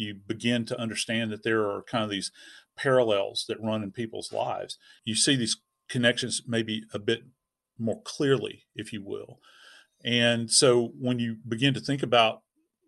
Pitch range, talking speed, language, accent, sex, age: 110-135 Hz, 170 wpm, English, American, male, 40-59